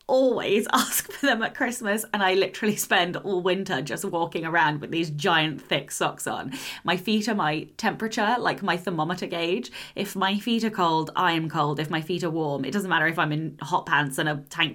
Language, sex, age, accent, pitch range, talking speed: English, female, 20-39, British, 160-210 Hz, 220 wpm